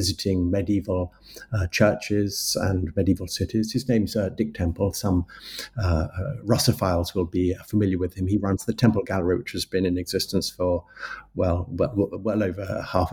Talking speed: 165 wpm